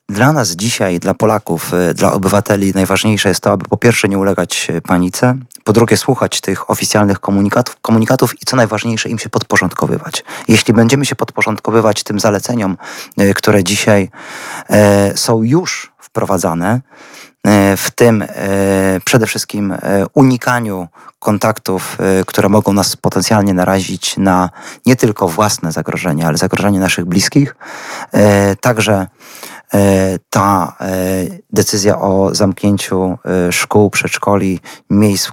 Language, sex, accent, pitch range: Polish, male, native, 95-115 Hz